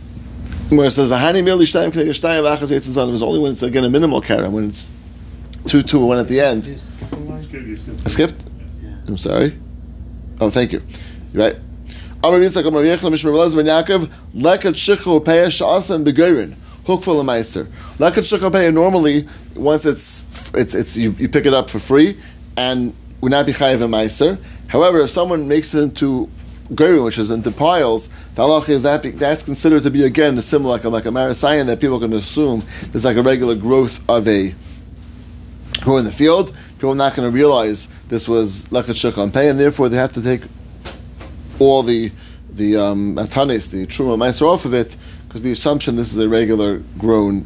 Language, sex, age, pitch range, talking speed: English, male, 30-49, 100-145 Hz, 150 wpm